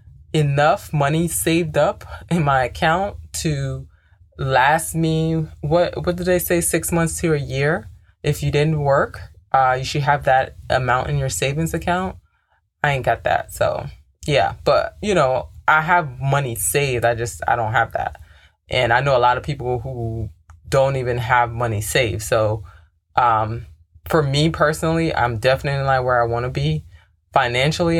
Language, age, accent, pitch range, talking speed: English, 20-39, American, 90-145 Hz, 170 wpm